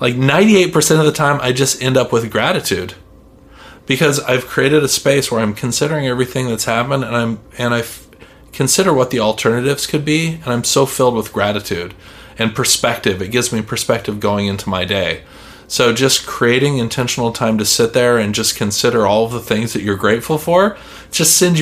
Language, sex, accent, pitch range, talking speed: English, male, American, 100-135 Hz, 200 wpm